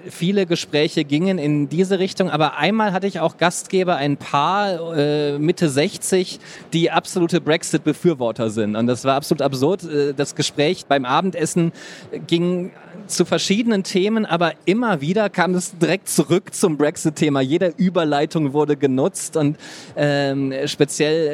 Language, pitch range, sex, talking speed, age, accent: German, 140-170 Hz, male, 140 wpm, 30-49, German